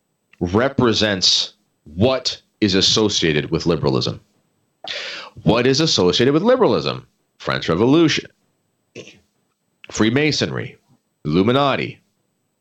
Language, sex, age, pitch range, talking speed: English, male, 40-59, 95-115 Hz, 70 wpm